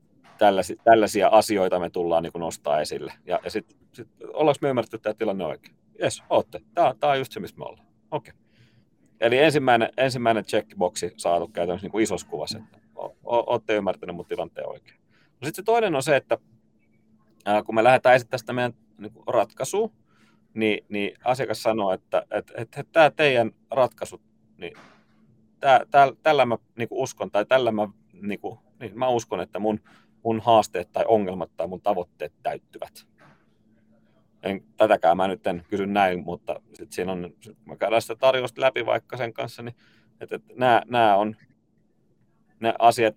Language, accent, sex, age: Finnish, native, male, 30-49